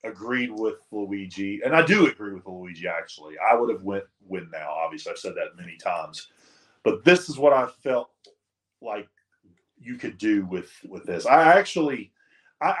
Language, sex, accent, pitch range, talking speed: English, male, American, 105-165 Hz, 180 wpm